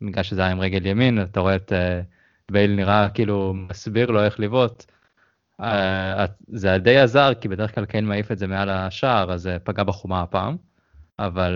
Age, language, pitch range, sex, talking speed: 20-39, Hebrew, 90-110 Hz, male, 180 wpm